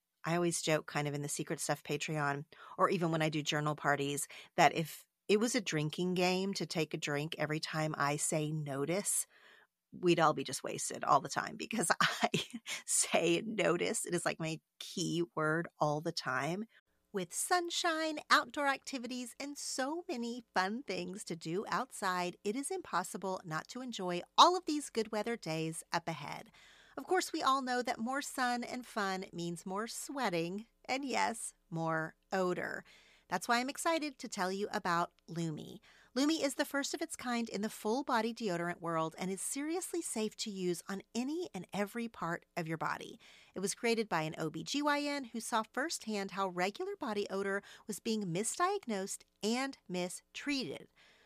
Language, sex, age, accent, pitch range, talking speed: English, female, 40-59, American, 170-245 Hz, 175 wpm